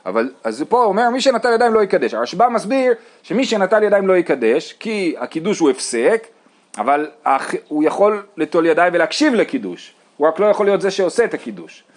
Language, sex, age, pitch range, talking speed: Hebrew, male, 30-49, 165-265 Hz, 180 wpm